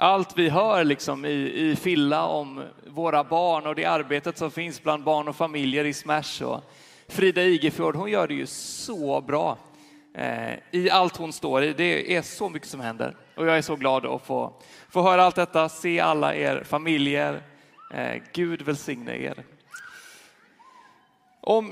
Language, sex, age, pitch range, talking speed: Swedish, male, 30-49, 150-210 Hz, 170 wpm